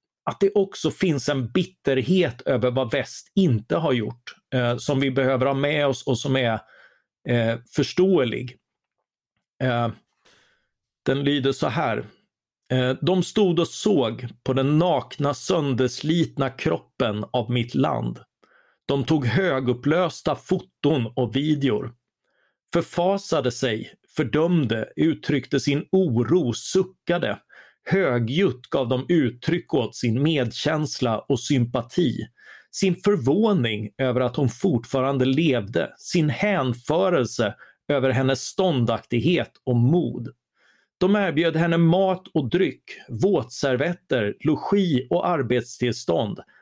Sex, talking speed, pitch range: male, 110 wpm, 125-165 Hz